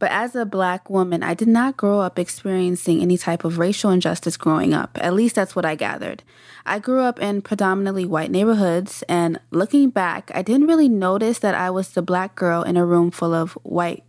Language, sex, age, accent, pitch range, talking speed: English, female, 20-39, American, 175-230 Hz, 215 wpm